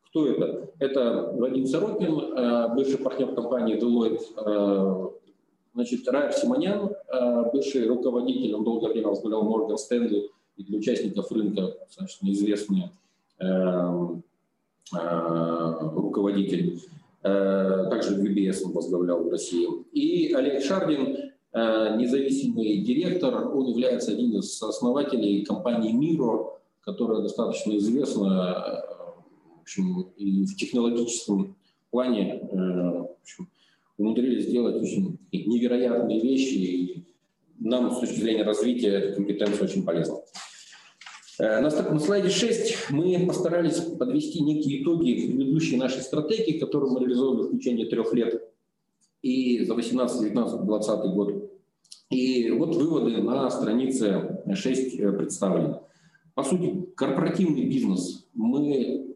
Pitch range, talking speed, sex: 100-150 Hz, 110 wpm, male